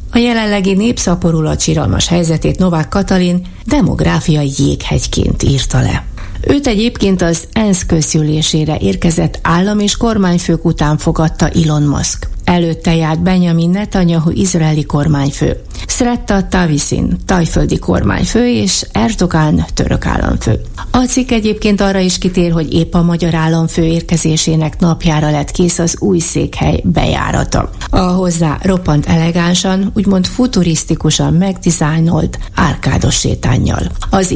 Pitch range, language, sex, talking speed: 155-195 Hz, Hungarian, female, 115 wpm